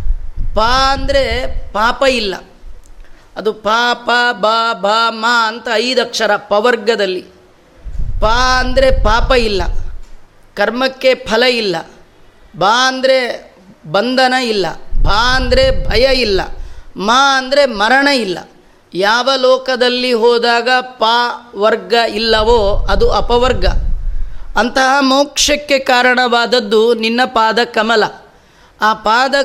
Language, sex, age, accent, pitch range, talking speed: Kannada, female, 30-49, native, 230-270 Hz, 90 wpm